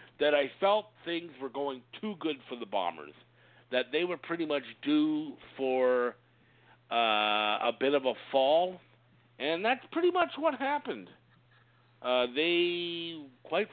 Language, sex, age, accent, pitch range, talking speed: English, male, 50-69, American, 125-160 Hz, 145 wpm